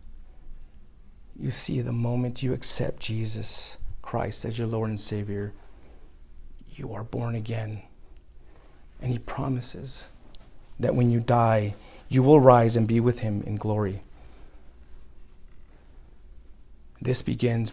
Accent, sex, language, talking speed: American, male, English, 120 wpm